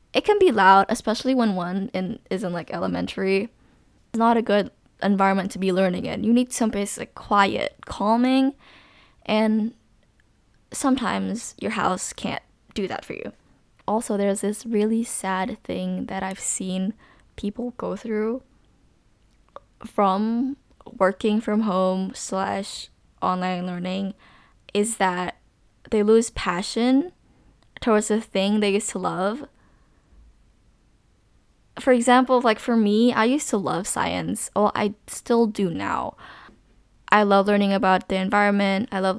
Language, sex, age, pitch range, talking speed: English, female, 10-29, 190-235 Hz, 135 wpm